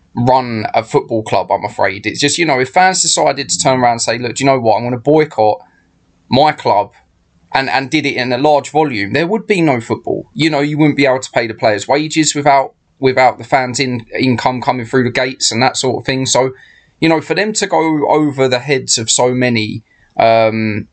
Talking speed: 235 wpm